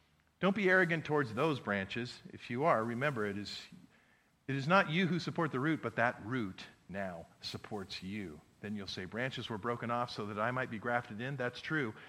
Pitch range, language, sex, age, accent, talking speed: 100-145 Hz, English, male, 50-69, American, 210 wpm